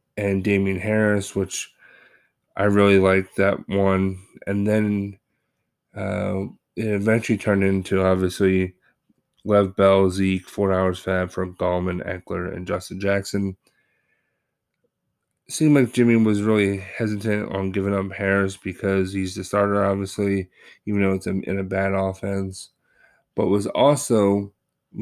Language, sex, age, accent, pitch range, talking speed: English, male, 20-39, American, 95-105 Hz, 135 wpm